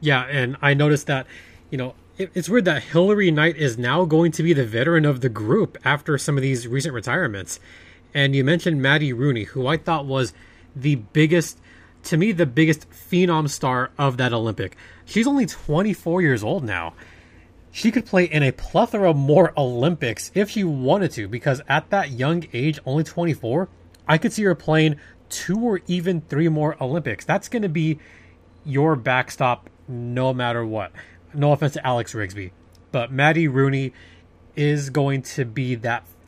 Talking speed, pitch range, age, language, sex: 175 wpm, 115-165 Hz, 20-39, English, male